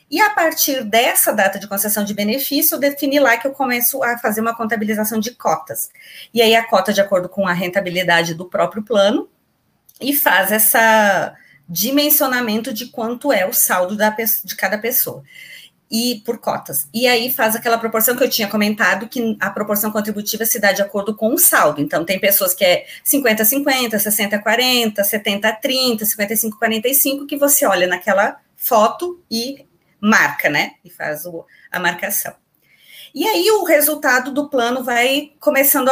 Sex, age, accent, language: female, 30-49, Brazilian, Portuguese